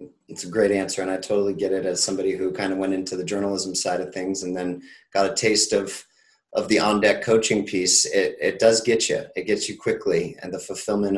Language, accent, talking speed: English, American, 235 wpm